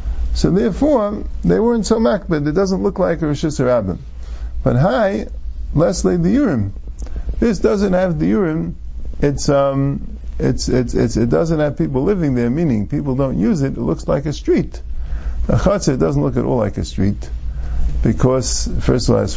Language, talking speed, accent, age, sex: English, 185 wpm, American, 50-69, male